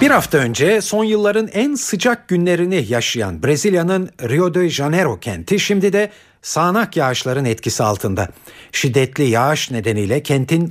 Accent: native